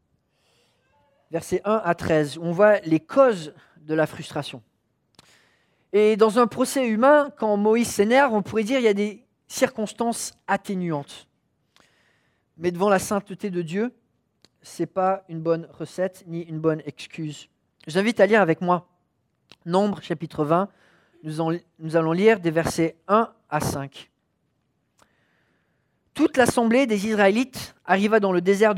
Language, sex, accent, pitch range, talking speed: English, male, French, 170-225 Hz, 145 wpm